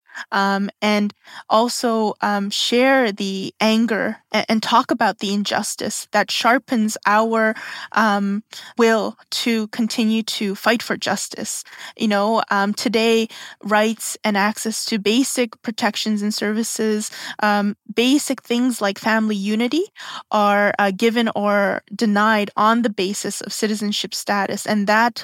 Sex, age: female, 20-39